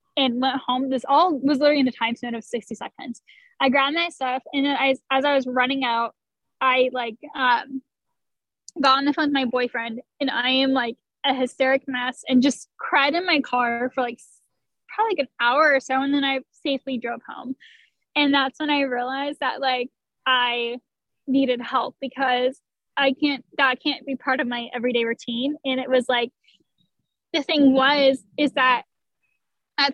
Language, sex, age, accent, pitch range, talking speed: English, female, 10-29, American, 250-285 Hz, 190 wpm